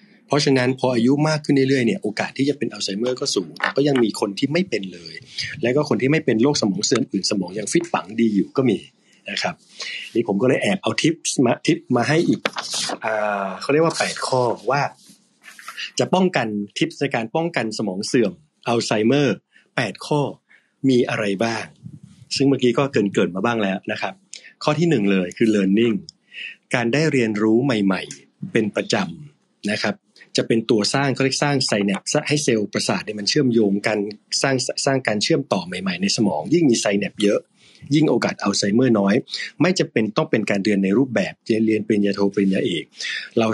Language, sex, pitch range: Thai, male, 105-140 Hz